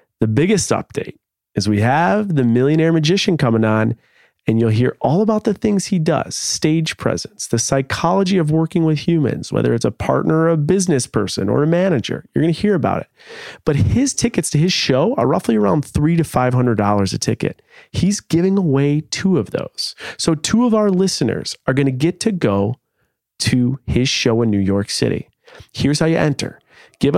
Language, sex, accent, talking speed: English, male, American, 195 wpm